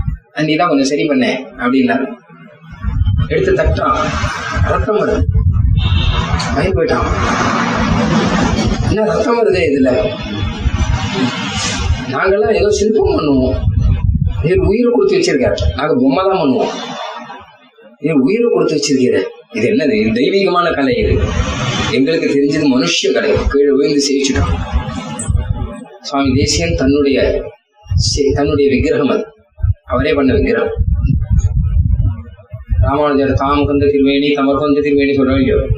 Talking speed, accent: 80 wpm, native